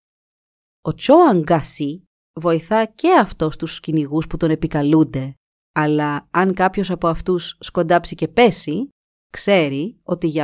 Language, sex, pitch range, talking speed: Greek, female, 160-220 Hz, 120 wpm